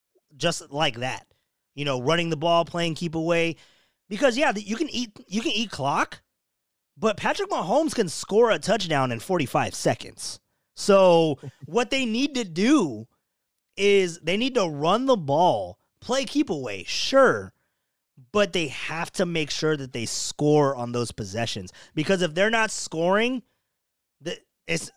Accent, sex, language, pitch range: American, male, English, 140-195 Hz